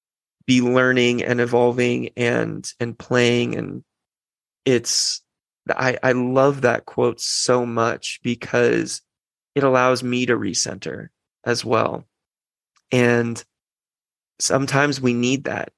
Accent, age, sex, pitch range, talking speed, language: American, 20-39, male, 120-130 Hz, 110 wpm, English